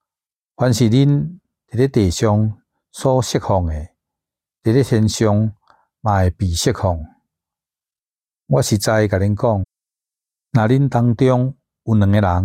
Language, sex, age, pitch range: Chinese, male, 60-79, 95-115 Hz